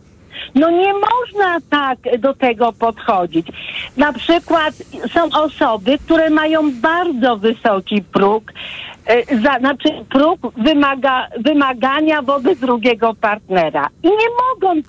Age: 50-69